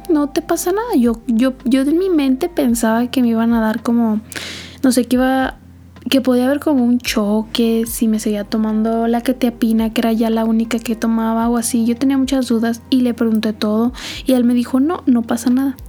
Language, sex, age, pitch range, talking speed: Spanish, female, 20-39, 235-265 Hz, 225 wpm